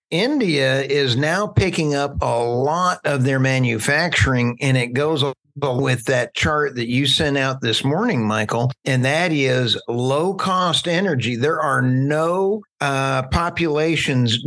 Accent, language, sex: American, English, male